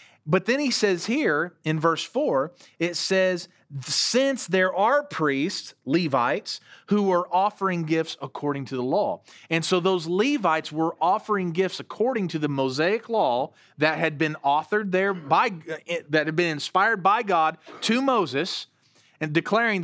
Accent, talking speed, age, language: American, 155 wpm, 40-59, English